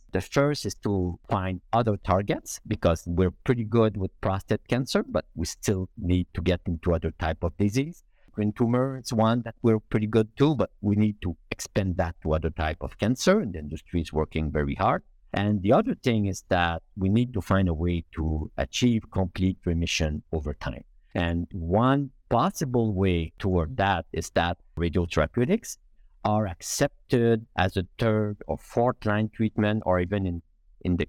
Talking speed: 175 wpm